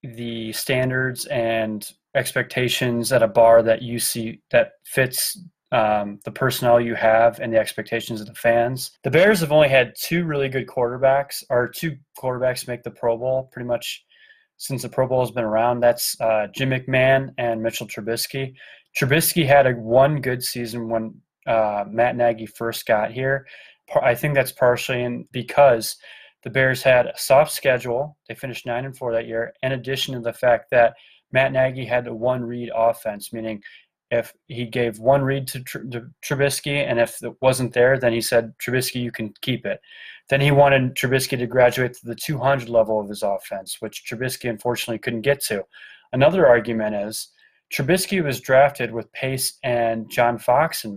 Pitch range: 115-135 Hz